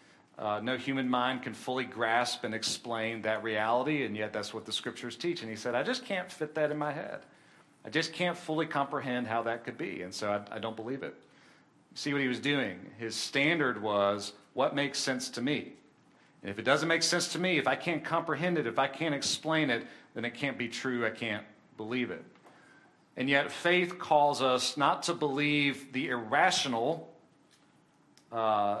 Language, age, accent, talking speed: English, 40-59, American, 200 wpm